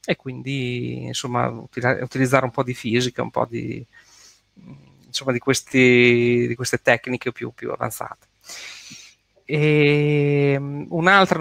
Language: Italian